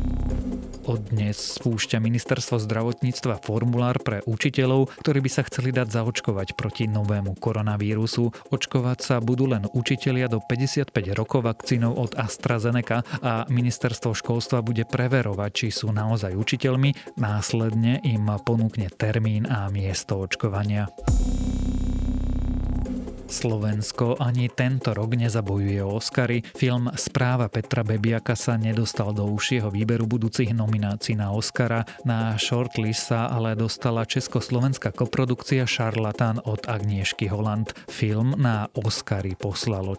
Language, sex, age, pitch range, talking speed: Slovak, male, 30-49, 105-125 Hz, 115 wpm